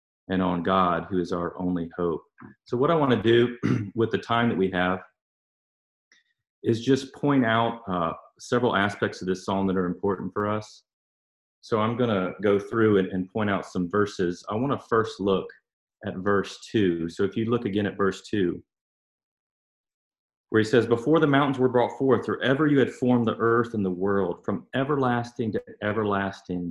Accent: American